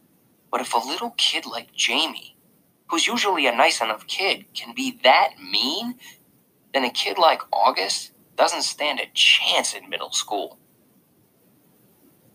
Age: 30-49